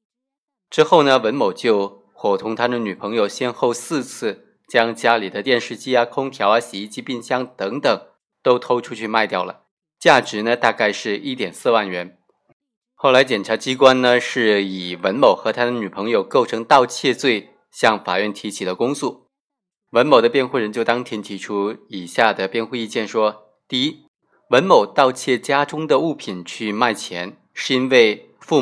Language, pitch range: Chinese, 105-145 Hz